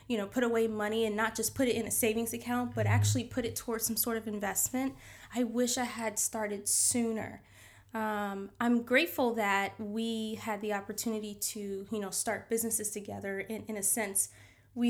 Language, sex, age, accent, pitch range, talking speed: English, female, 20-39, American, 205-245 Hz, 195 wpm